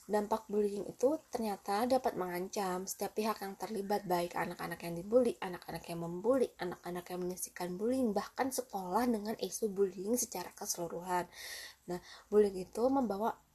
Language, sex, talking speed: Indonesian, female, 140 wpm